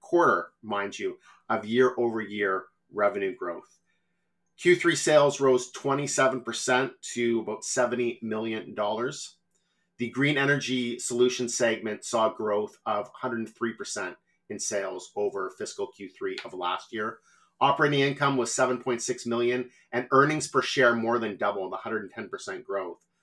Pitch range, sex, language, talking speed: 110-140 Hz, male, English, 125 wpm